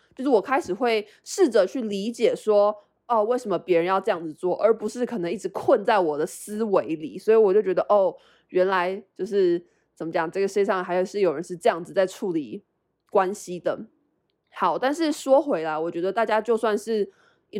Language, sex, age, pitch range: Chinese, female, 20-39, 185-250 Hz